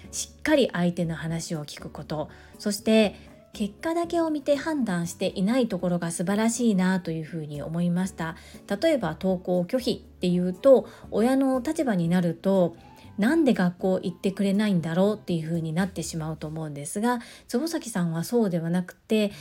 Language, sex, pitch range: Japanese, female, 175-230 Hz